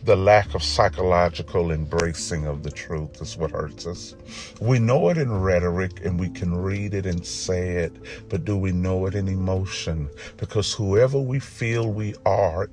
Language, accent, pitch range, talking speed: English, American, 95-125 Hz, 180 wpm